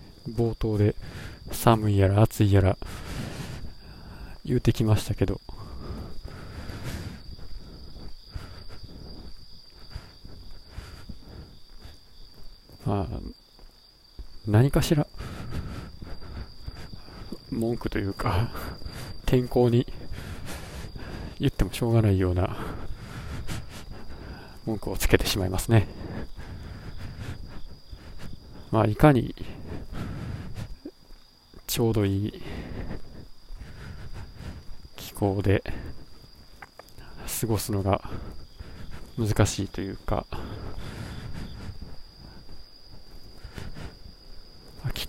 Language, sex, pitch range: Japanese, male, 85-110 Hz